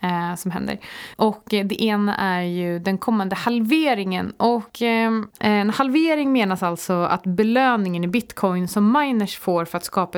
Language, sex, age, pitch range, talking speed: Swedish, female, 20-39, 180-230 Hz, 140 wpm